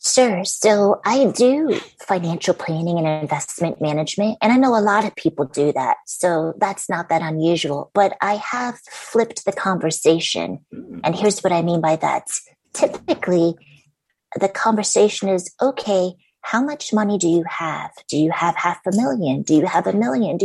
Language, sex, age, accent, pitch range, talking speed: English, female, 30-49, American, 170-230 Hz, 175 wpm